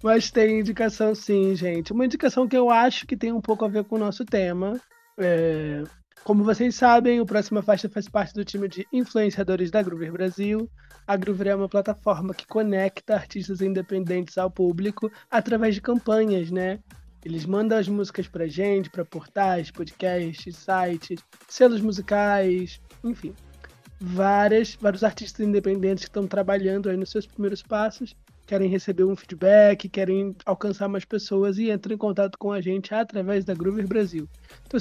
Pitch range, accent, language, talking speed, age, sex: 195-230 Hz, Brazilian, Portuguese, 160 wpm, 20-39, male